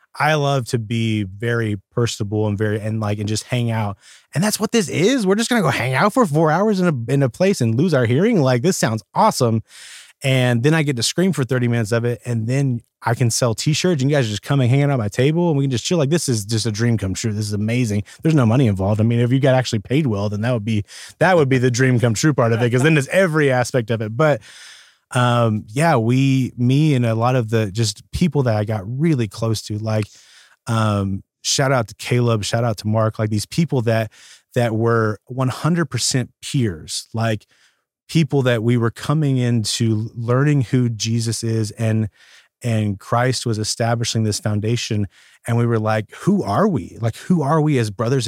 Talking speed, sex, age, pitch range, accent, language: 230 wpm, male, 20-39, 110-140 Hz, American, English